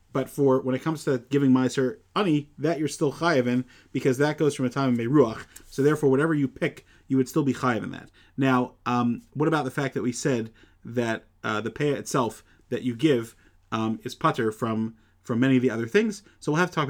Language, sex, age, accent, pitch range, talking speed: English, male, 30-49, American, 110-135 Hz, 225 wpm